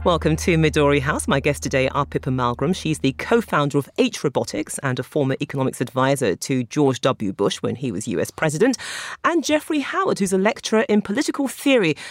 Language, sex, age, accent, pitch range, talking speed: English, female, 40-59, British, 150-235 Hz, 190 wpm